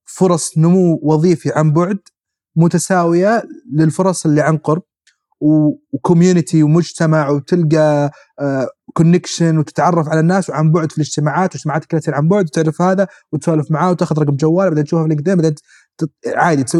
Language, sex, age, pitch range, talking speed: Arabic, male, 30-49, 150-170 Hz, 130 wpm